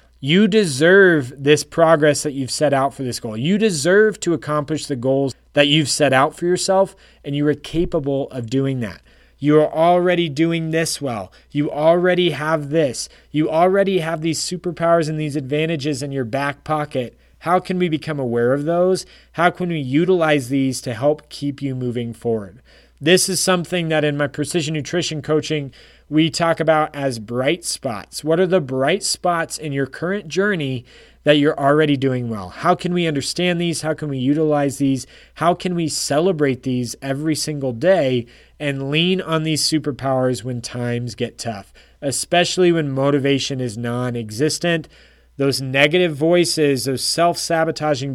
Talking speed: 170 wpm